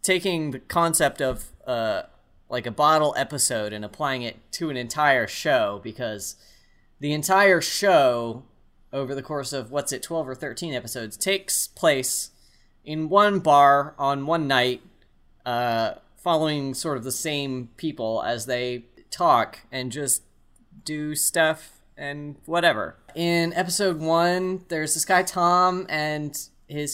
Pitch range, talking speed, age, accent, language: 125-160 Hz, 140 wpm, 30-49, American, English